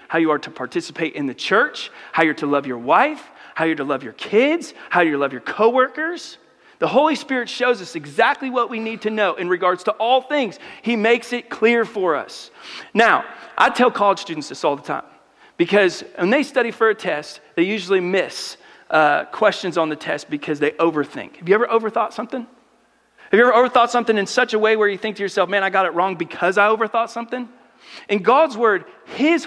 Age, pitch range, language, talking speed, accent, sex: 40-59, 185-260 Hz, English, 215 wpm, American, male